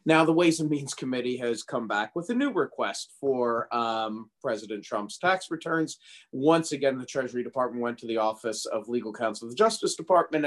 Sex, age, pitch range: male, 40-59, 110-160 Hz